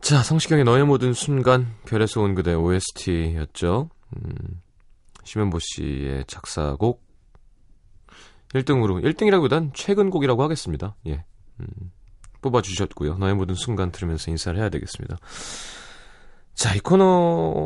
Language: Korean